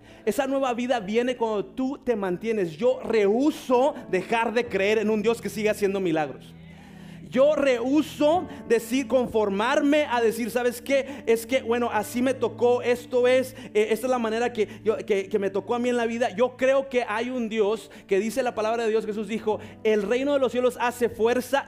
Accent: Mexican